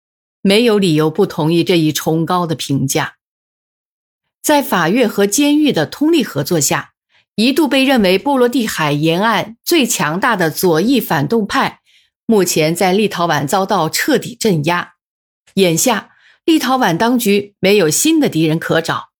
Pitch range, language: 170-245 Hz, Chinese